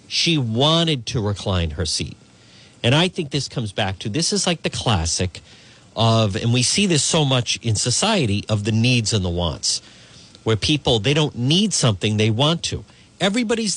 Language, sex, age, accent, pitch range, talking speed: English, male, 50-69, American, 110-160 Hz, 185 wpm